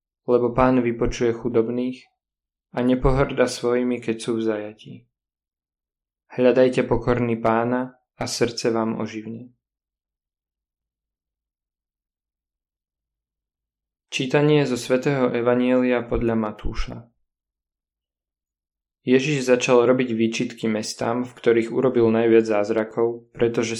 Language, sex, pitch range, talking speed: Slovak, male, 110-125 Hz, 90 wpm